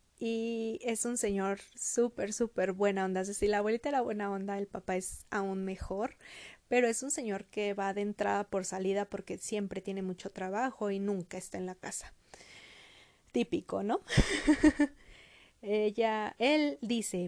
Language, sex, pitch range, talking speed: Spanish, female, 195-245 Hz, 155 wpm